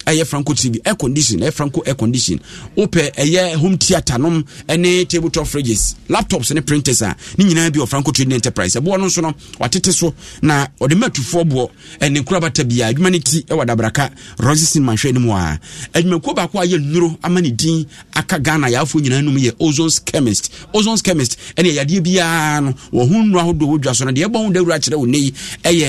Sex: male